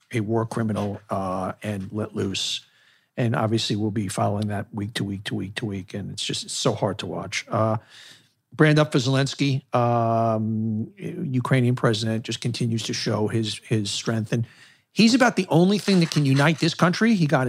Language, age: English, 50-69